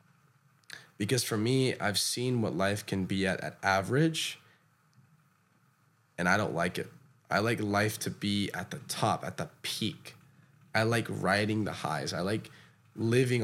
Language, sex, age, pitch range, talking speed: English, male, 10-29, 105-145 Hz, 160 wpm